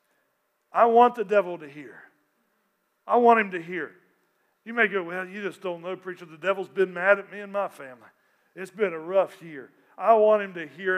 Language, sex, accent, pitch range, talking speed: English, male, American, 205-245 Hz, 215 wpm